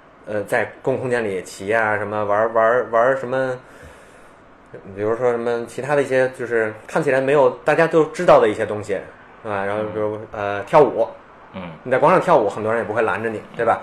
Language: Chinese